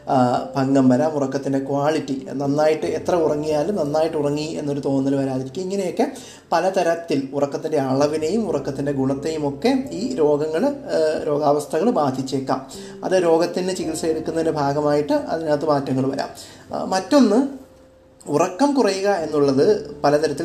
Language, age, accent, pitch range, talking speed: Malayalam, 30-49, native, 140-180 Hz, 100 wpm